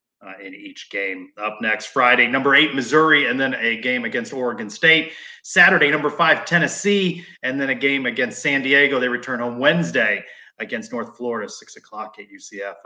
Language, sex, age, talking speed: English, male, 30-49, 180 wpm